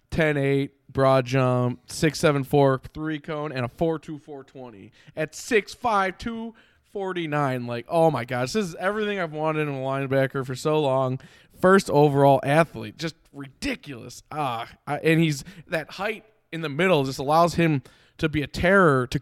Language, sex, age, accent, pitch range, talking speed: English, male, 20-39, American, 125-160 Hz, 155 wpm